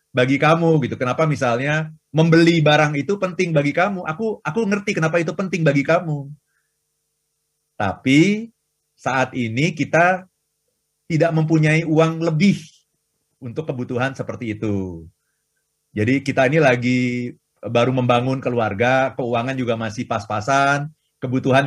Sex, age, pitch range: male, 30-49, 130-175 Hz